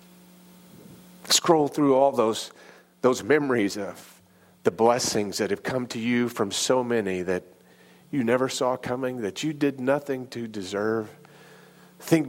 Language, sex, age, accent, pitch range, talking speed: English, male, 40-59, American, 90-140 Hz, 140 wpm